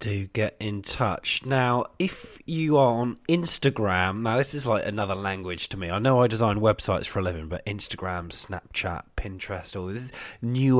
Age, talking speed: 30-49, 185 wpm